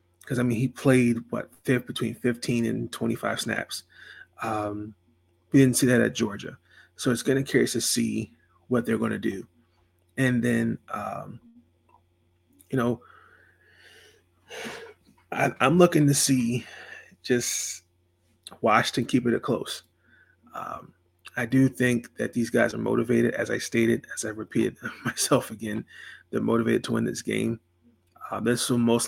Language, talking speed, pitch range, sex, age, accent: English, 155 wpm, 90-120 Hz, male, 30-49, American